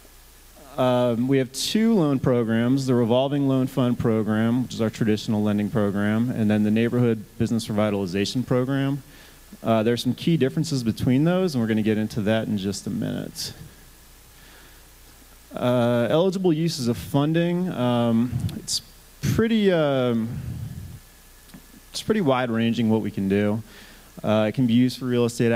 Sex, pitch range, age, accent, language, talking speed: male, 105-125 Hz, 30-49, American, English, 155 wpm